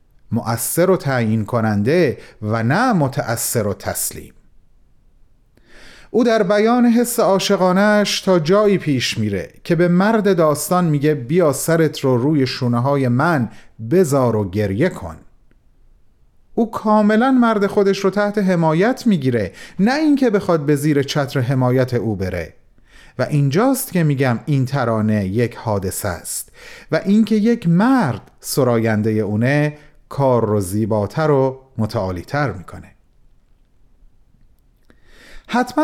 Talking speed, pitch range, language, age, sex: 120 wpm, 115-180 Hz, Persian, 40-59, male